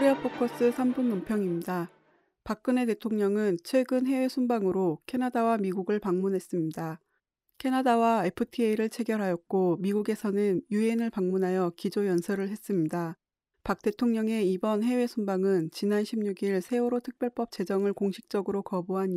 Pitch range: 185-225 Hz